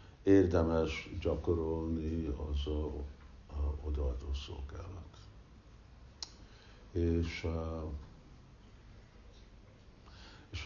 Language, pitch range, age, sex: Hungarian, 75-90 Hz, 60-79, male